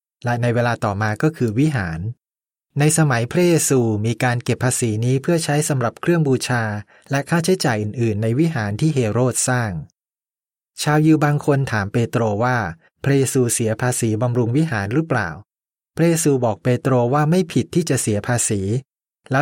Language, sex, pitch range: Thai, male, 115-150 Hz